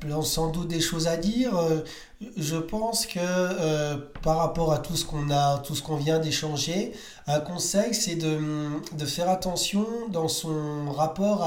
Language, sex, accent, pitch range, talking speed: French, male, French, 150-175 Hz, 170 wpm